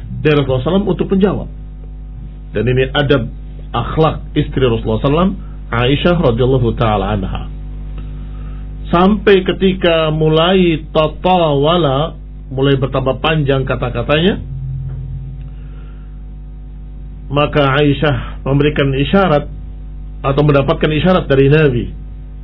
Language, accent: Indonesian, native